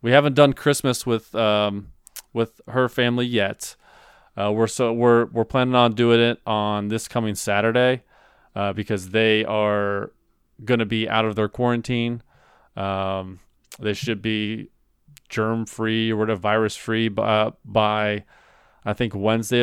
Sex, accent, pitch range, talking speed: male, American, 105-125 Hz, 145 wpm